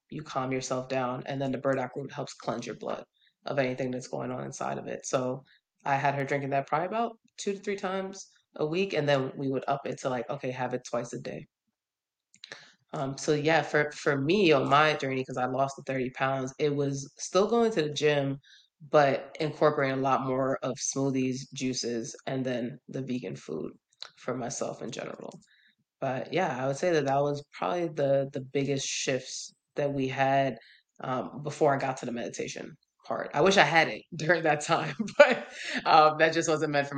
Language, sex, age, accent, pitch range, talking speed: English, female, 20-39, American, 130-150 Hz, 205 wpm